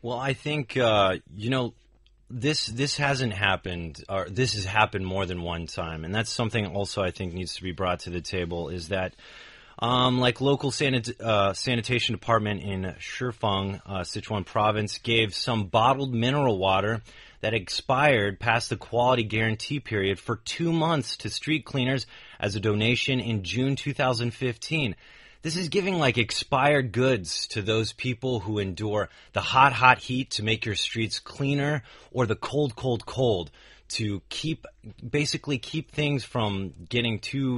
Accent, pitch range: American, 105-130 Hz